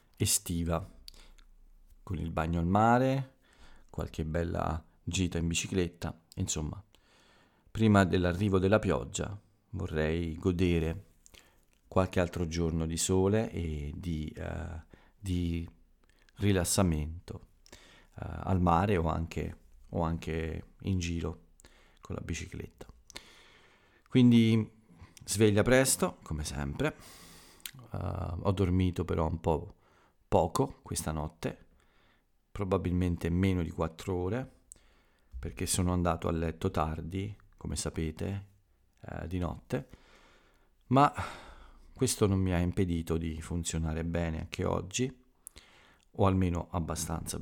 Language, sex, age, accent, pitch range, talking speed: Italian, male, 40-59, native, 80-95 Hz, 105 wpm